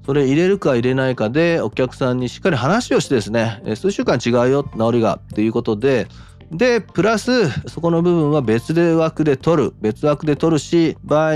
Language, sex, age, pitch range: Japanese, male, 40-59, 105-145 Hz